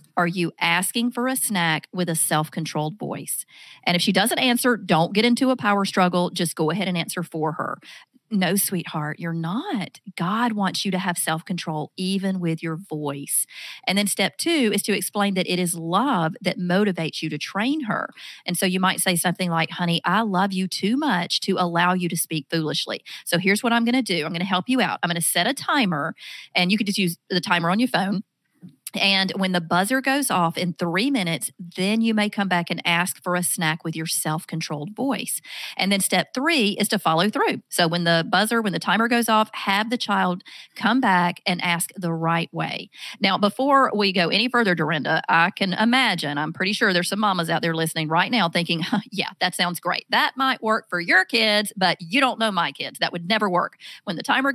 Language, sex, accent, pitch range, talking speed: English, female, American, 170-210 Hz, 220 wpm